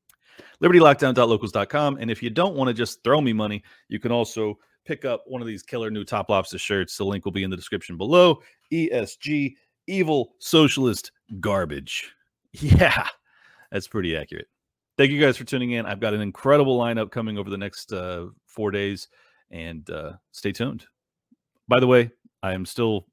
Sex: male